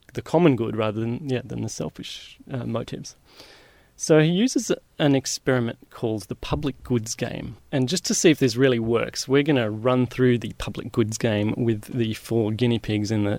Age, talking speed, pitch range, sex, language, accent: 30-49, 205 wpm, 115-135 Hz, male, English, Australian